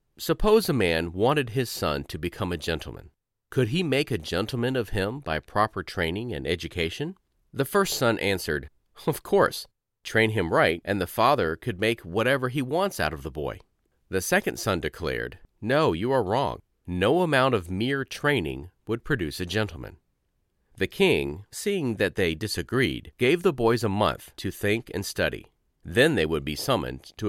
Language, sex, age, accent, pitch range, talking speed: English, male, 40-59, American, 80-125 Hz, 180 wpm